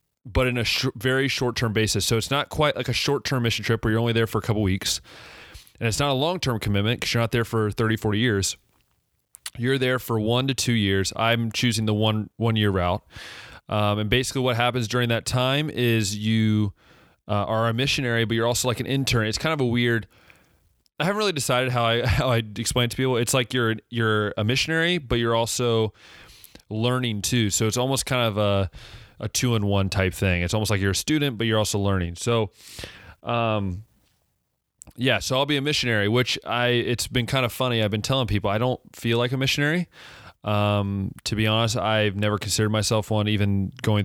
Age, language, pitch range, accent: 30-49, English, 105-125 Hz, American